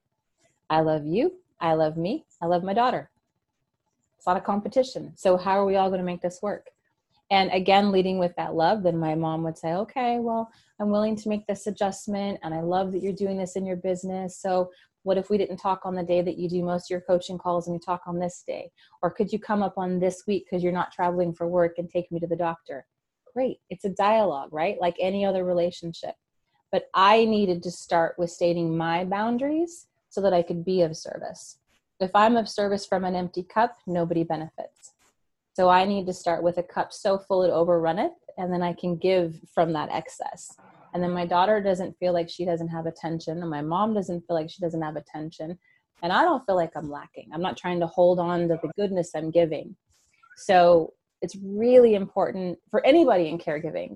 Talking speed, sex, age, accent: 220 wpm, female, 30-49, American